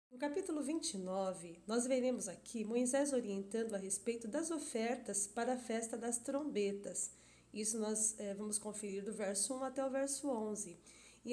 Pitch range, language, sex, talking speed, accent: 205-255 Hz, Portuguese, female, 155 wpm, Brazilian